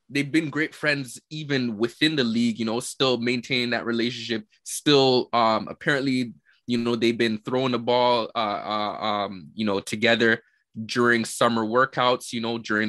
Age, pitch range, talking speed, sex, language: 20-39, 115-140 Hz, 170 wpm, male, English